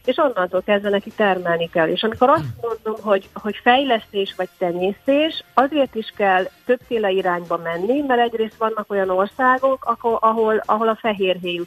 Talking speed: 155 wpm